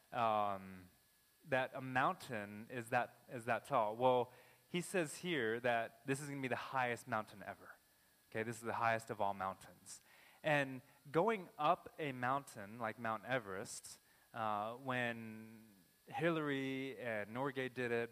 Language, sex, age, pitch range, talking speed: English, male, 20-39, 105-140 Hz, 150 wpm